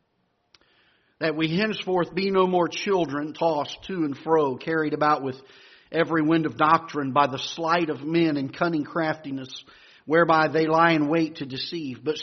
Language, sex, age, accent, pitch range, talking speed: English, male, 50-69, American, 150-180 Hz, 165 wpm